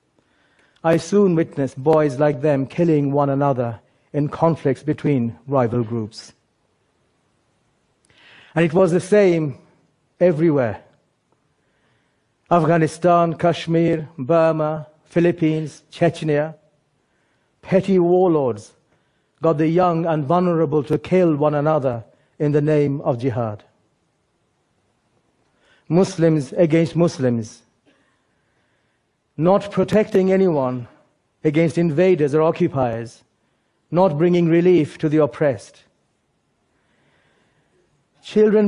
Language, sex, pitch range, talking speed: English, male, 140-170 Hz, 90 wpm